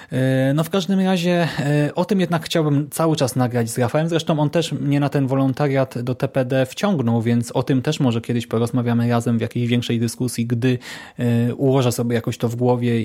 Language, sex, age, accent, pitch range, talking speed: Polish, male, 20-39, native, 120-145 Hz, 195 wpm